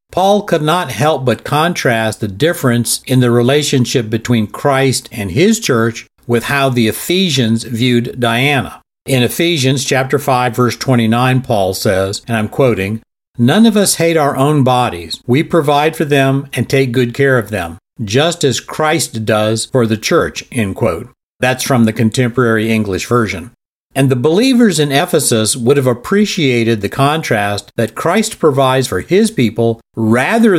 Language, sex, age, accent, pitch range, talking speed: English, male, 50-69, American, 120-145 Hz, 160 wpm